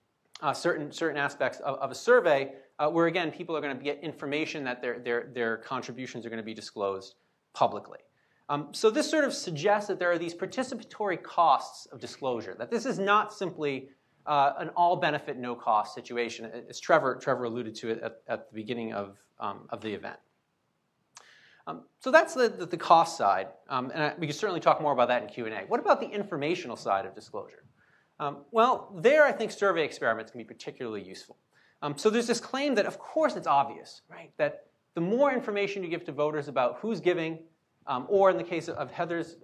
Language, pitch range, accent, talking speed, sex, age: English, 135-215 Hz, American, 205 wpm, male, 30-49